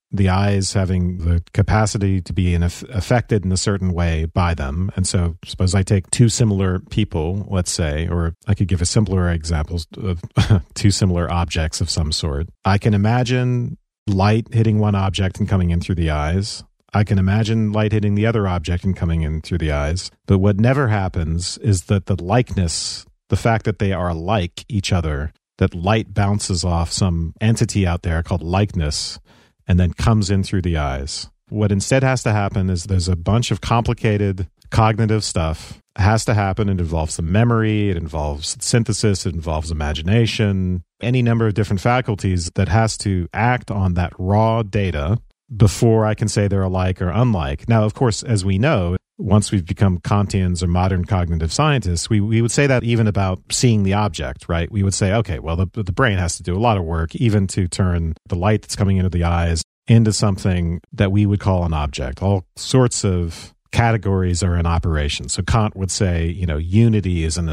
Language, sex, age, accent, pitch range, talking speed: English, male, 40-59, American, 85-110 Hz, 200 wpm